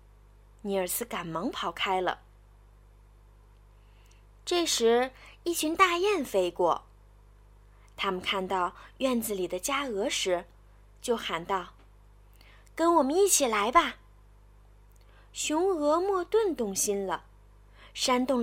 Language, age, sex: Chinese, 20-39, female